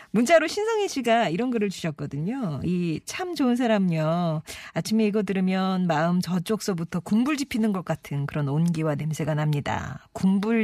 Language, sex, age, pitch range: Korean, female, 40-59, 155-225 Hz